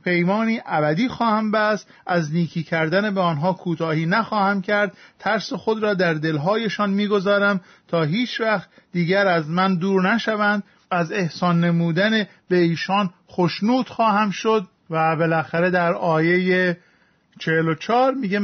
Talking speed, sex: 130 wpm, male